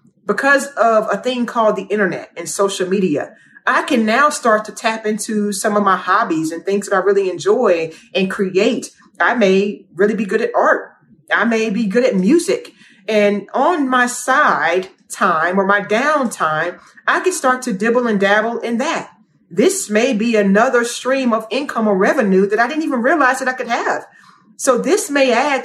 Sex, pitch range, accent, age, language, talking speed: female, 200-245 Hz, American, 30-49, English, 190 wpm